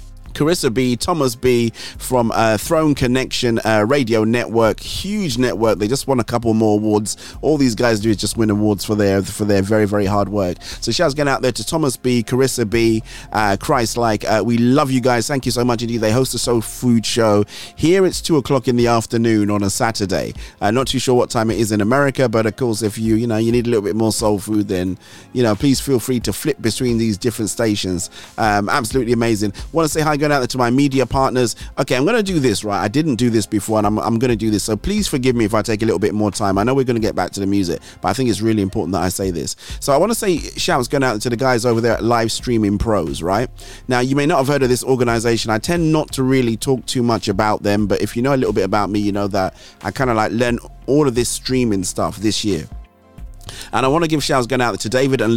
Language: English